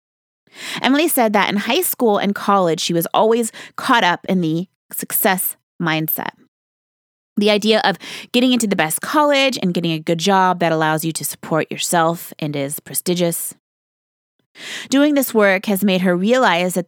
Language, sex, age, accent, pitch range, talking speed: English, female, 20-39, American, 170-230 Hz, 165 wpm